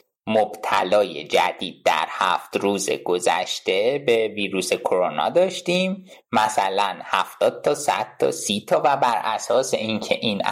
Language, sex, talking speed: Persian, male, 120 wpm